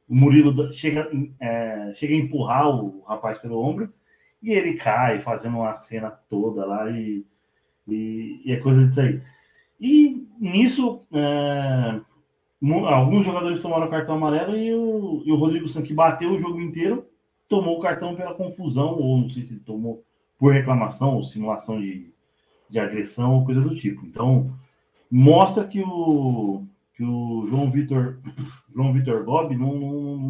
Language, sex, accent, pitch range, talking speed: Portuguese, male, Brazilian, 120-155 Hz, 155 wpm